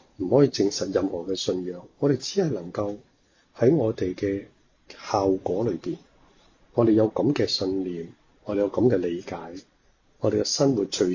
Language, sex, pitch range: Chinese, male, 95-125 Hz